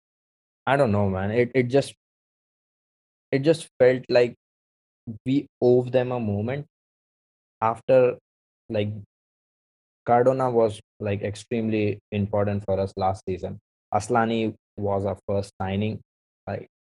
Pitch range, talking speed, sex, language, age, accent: 100-115 Hz, 120 wpm, male, English, 20-39, Indian